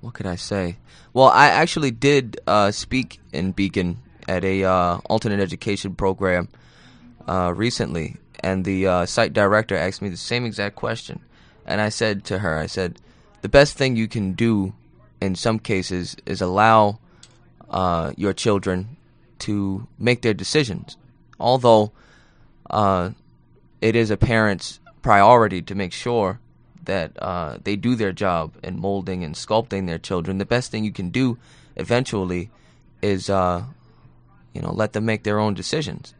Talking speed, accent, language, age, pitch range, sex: 155 wpm, American, English, 20-39, 90-115 Hz, male